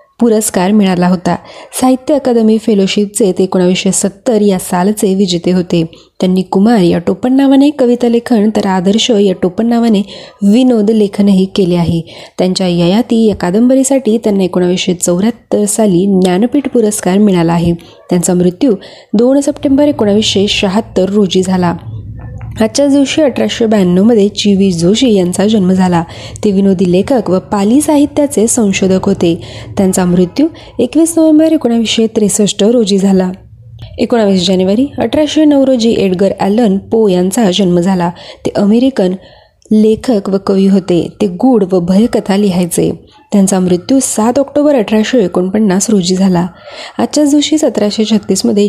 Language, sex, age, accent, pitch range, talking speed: Marathi, female, 20-39, native, 185-235 Hz, 125 wpm